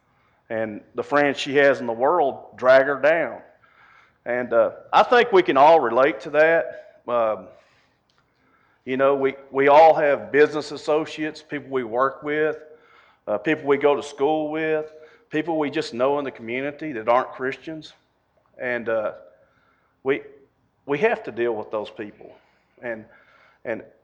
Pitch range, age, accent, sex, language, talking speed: 120-155 Hz, 40-59, American, male, English, 155 wpm